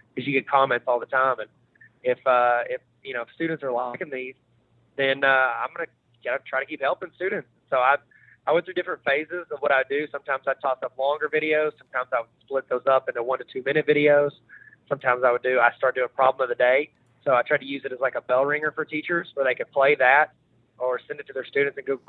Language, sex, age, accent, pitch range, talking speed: English, male, 20-39, American, 125-150 Hz, 255 wpm